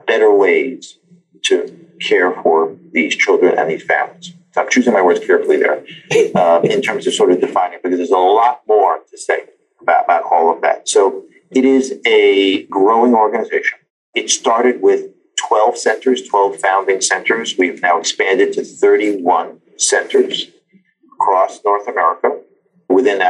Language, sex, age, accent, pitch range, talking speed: English, male, 50-69, American, 350-420 Hz, 155 wpm